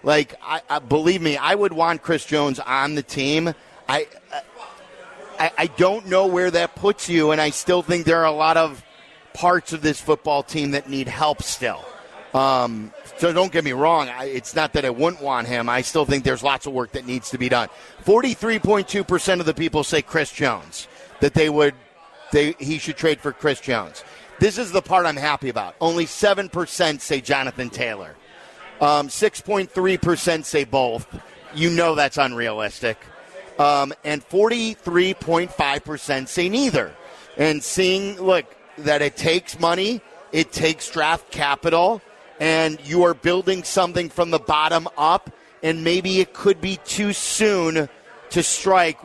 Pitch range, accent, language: 145-175 Hz, American, English